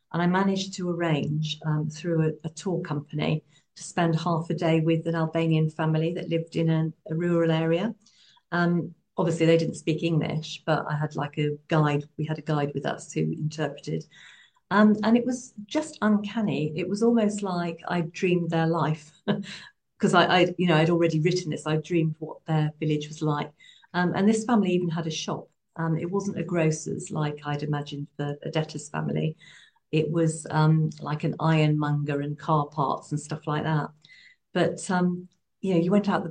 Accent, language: British, English